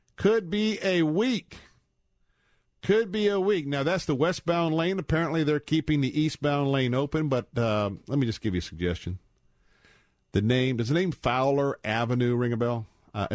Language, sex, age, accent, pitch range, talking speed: English, male, 50-69, American, 105-160 Hz, 180 wpm